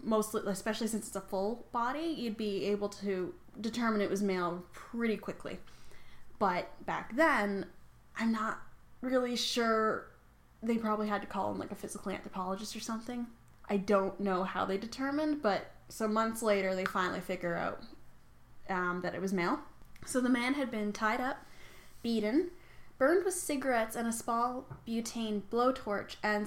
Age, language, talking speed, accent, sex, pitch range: 10-29, English, 165 wpm, American, female, 200-240 Hz